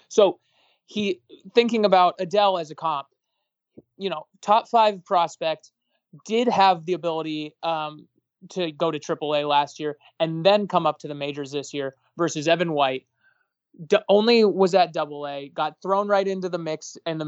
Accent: American